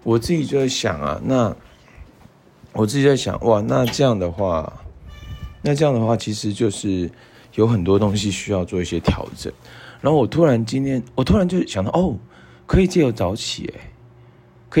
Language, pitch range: Chinese, 90-120 Hz